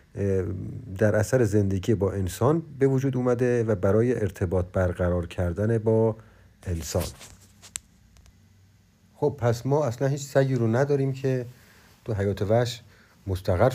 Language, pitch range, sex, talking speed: Persian, 95-120 Hz, male, 120 wpm